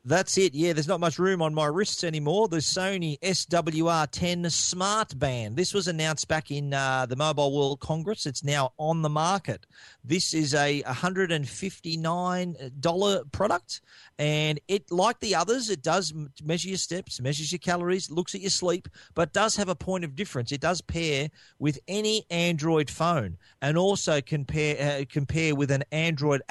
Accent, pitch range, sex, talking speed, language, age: Australian, 135-170 Hz, male, 170 wpm, English, 40-59